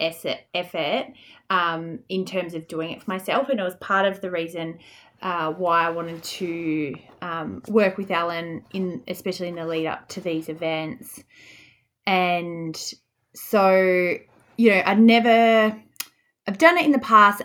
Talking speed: 160 wpm